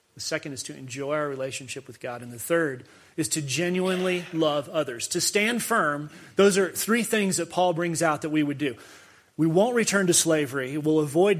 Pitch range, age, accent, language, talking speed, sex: 150-195 Hz, 30-49, American, English, 205 wpm, male